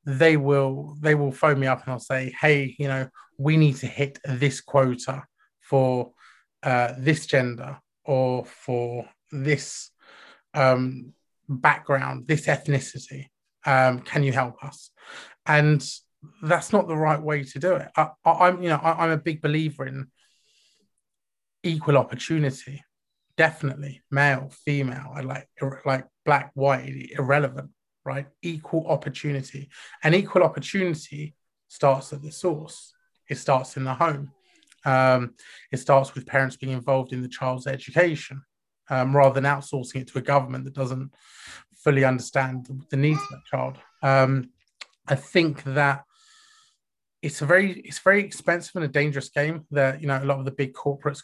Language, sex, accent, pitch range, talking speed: English, male, British, 130-150 Hz, 155 wpm